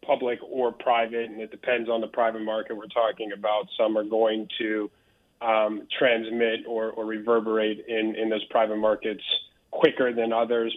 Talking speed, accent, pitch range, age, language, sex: 165 wpm, American, 110-125 Hz, 30-49, English, male